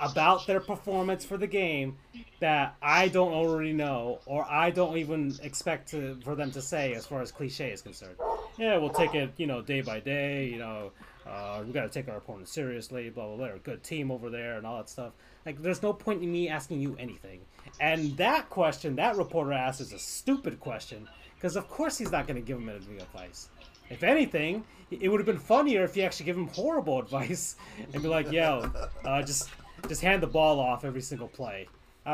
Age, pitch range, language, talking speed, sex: 30-49, 120-170 Hz, English, 220 wpm, male